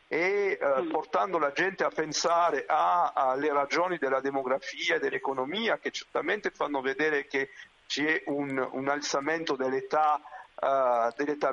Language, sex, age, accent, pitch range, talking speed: Italian, male, 50-69, native, 135-165 Hz, 115 wpm